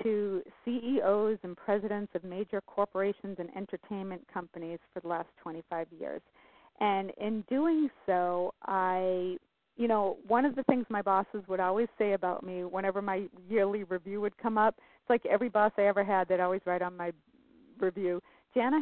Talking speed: 170 wpm